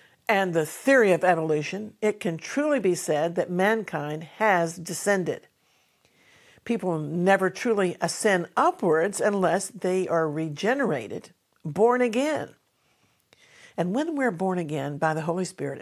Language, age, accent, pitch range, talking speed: English, 50-69, American, 160-220 Hz, 130 wpm